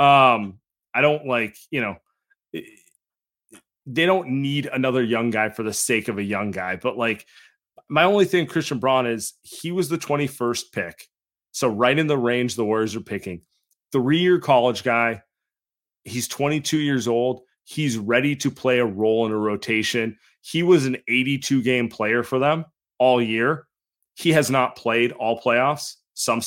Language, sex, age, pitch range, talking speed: English, male, 30-49, 115-155 Hz, 170 wpm